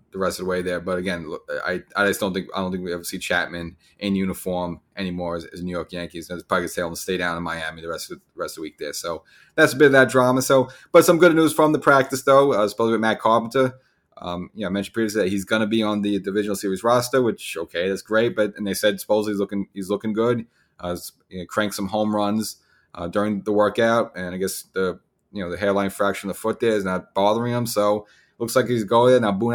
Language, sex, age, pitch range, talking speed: English, male, 30-49, 95-110 Hz, 270 wpm